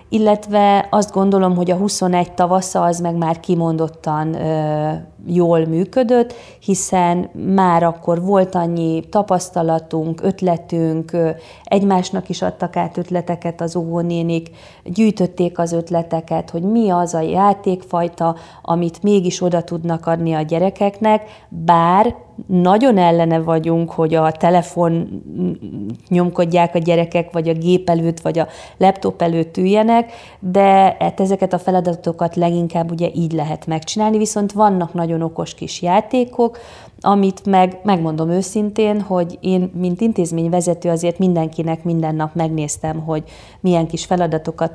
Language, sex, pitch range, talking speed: Hungarian, female, 165-195 Hz, 125 wpm